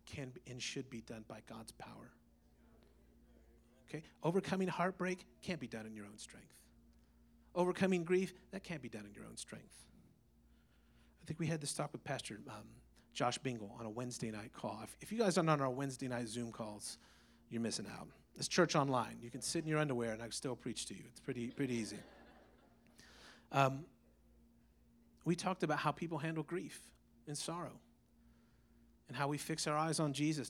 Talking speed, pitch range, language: 190 wpm, 115-165 Hz, English